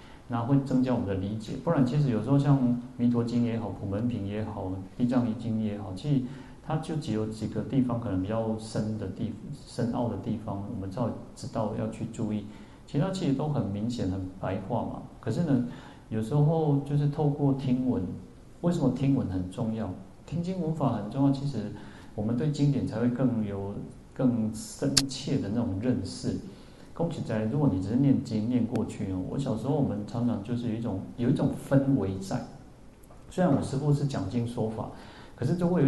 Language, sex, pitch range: Chinese, male, 110-135 Hz